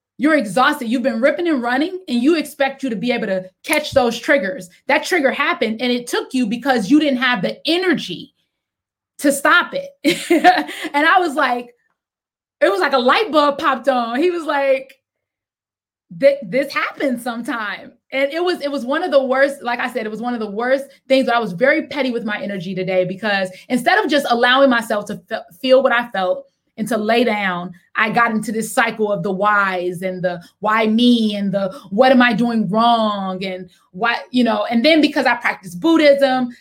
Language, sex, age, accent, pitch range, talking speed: English, female, 20-39, American, 220-285 Hz, 205 wpm